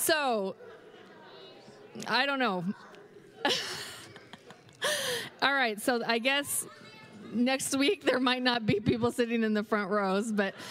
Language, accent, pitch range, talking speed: English, American, 210-265 Hz, 125 wpm